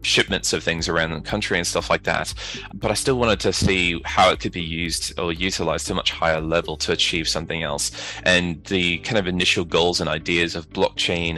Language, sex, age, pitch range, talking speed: English, male, 20-39, 80-90 Hz, 220 wpm